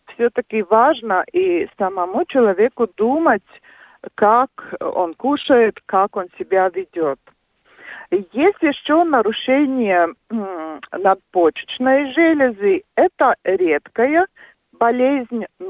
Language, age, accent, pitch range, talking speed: Russian, 50-69, native, 195-300 Hz, 85 wpm